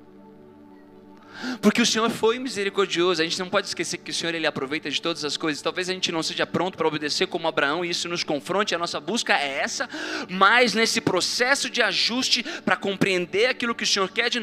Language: Portuguese